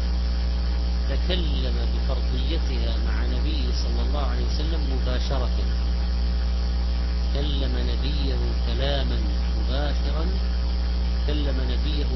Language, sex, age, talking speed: Arabic, male, 40-59, 75 wpm